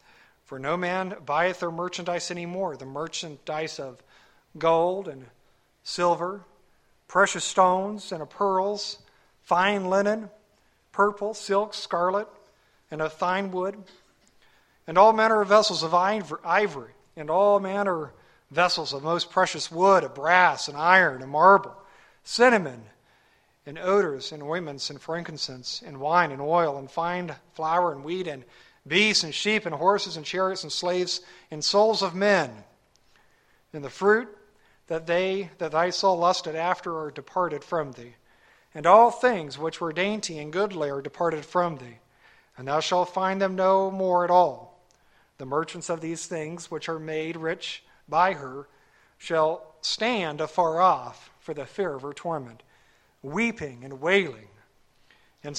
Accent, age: American, 50-69